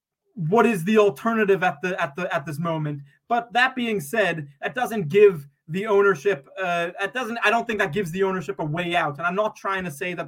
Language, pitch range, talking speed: English, 165-200 Hz, 235 wpm